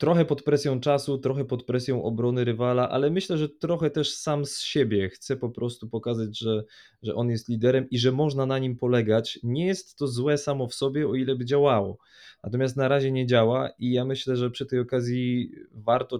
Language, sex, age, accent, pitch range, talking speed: Polish, male, 20-39, native, 110-135 Hz, 210 wpm